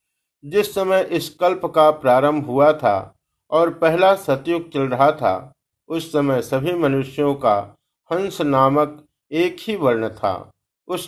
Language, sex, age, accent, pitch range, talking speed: Hindi, male, 50-69, native, 140-160 Hz, 140 wpm